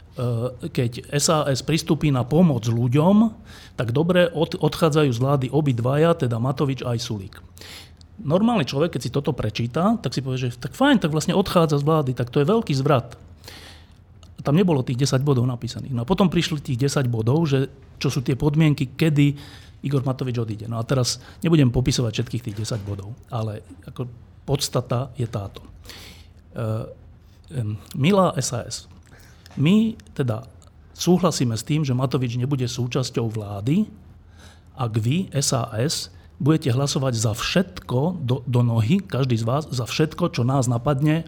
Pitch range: 115-155 Hz